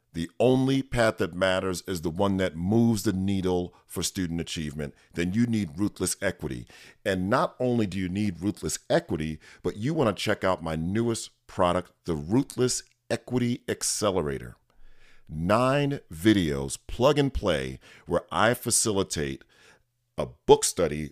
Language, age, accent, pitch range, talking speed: English, 40-59, American, 85-120 Hz, 150 wpm